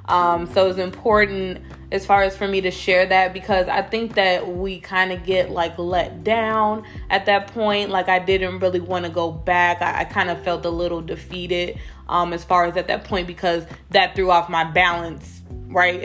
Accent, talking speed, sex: American, 205 wpm, female